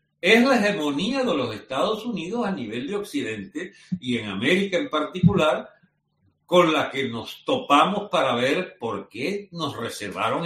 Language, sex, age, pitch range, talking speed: Spanish, male, 60-79, 125-200 Hz, 155 wpm